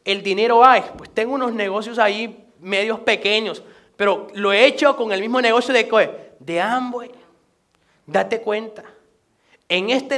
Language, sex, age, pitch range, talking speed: Spanish, male, 30-49, 185-235 Hz, 155 wpm